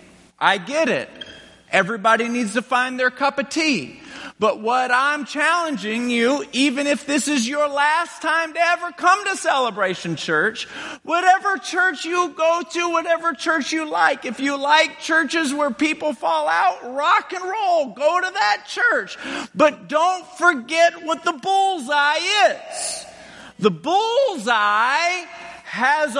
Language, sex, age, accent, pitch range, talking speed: English, male, 40-59, American, 230-325 Hz, 145 wpm